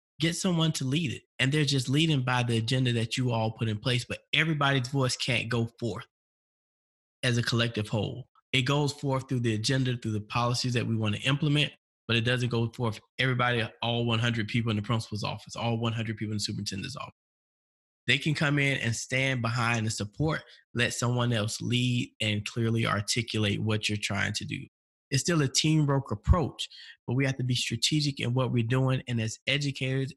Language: English